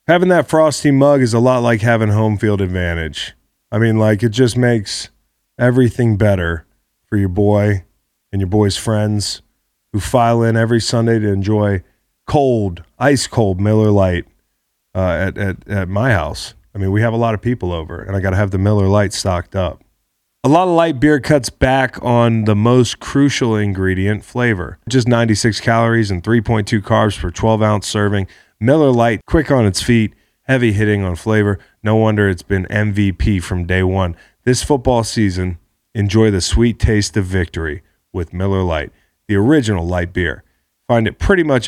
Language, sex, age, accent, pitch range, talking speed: English, male, 30-49, American, 95-115 Hz, 180 wpm